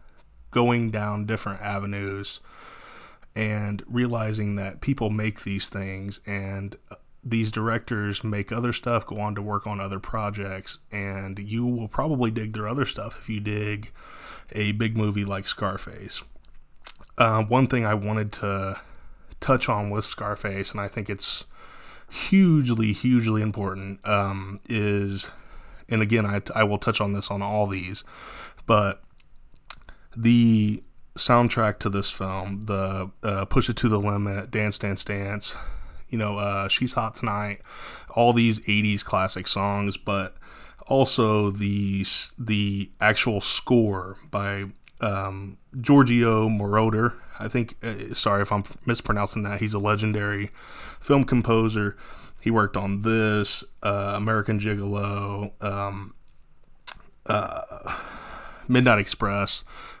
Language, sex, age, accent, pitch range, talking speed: English, male, 20-39, American, 100-110 Hz, 130 wpm